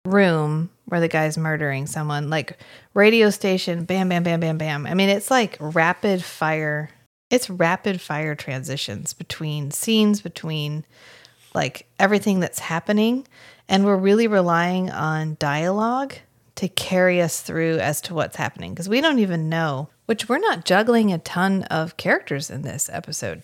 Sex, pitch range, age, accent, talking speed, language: female, 160-205 Hz, 30-49, American, 155 wpm, English